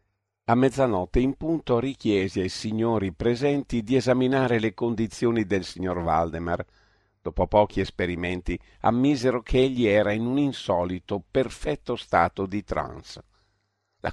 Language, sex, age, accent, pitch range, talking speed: Italian, male, 50-69, native, 95-120 Hz, 125 wpm